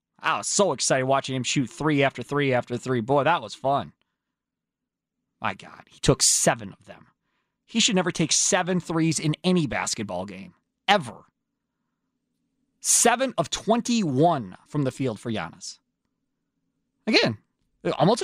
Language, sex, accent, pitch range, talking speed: English, male, American, 150-225 Hz, 145 wpm